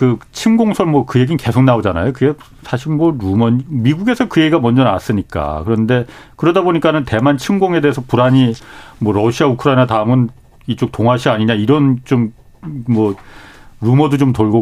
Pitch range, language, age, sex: 115-160 Hz, Korean, 40-59, male